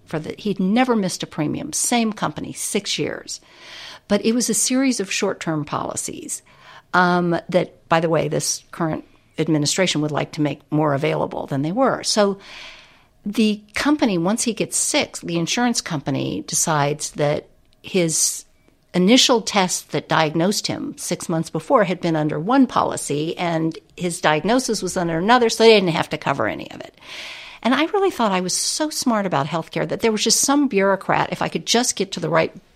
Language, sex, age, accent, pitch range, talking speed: English, female, 60-79, American, 155-210 Hz, 185 wpm